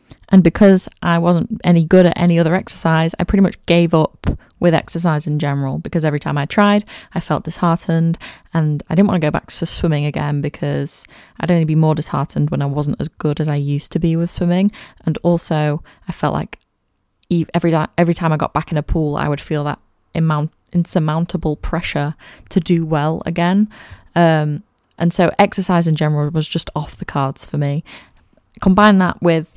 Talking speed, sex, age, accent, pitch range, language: 190 wpm, female, 20-39, British, 150-180 Hz, English